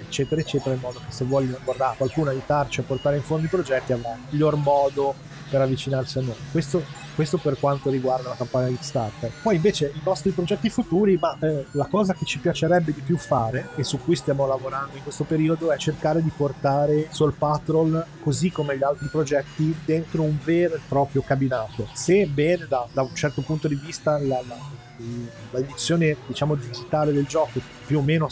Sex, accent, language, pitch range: male, native, Italian, 130-155 Hz